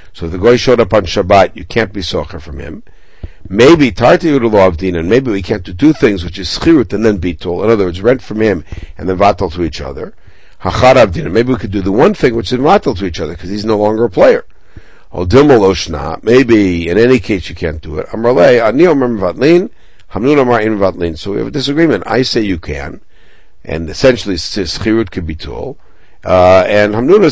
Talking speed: 190 wpm